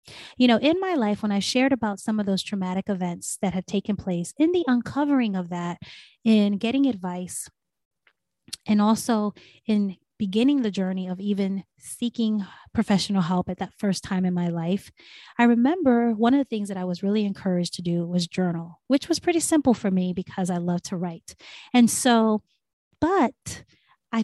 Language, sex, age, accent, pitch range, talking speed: English, female, 20-39, American, 185-235 Hz, 185 wpm